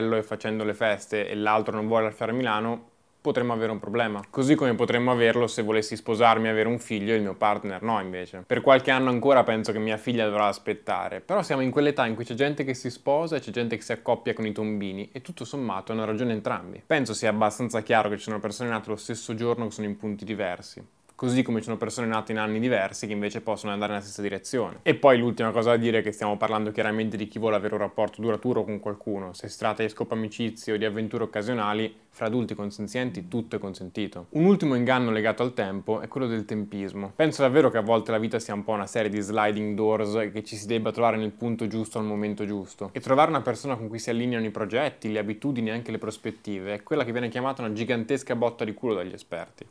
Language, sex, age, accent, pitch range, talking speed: Italian, male, 10-29, native, 105-120 Hz, 240 wpm